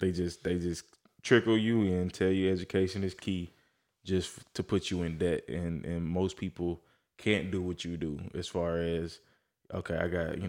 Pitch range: 85-95 Hz